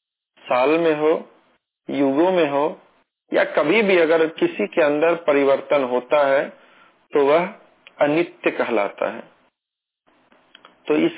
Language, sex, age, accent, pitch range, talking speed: Hindi, male, 40-59, native, 145-180 Hz, 120 wpm